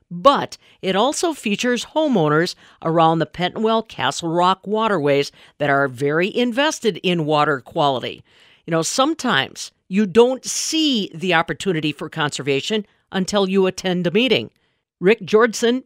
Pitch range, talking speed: 165-235 Hz, 130 wpm